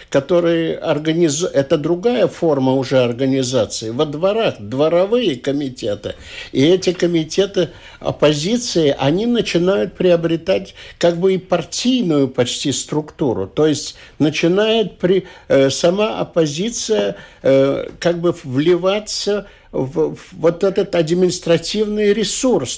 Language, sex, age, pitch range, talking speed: Russian, male, 60-79, 140-185 Hz, 100 wpm